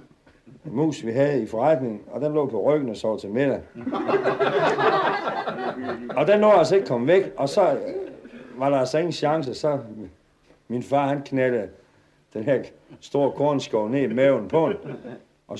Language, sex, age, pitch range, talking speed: Danish, male, 60-79, 120-160 Hz, 170 wpm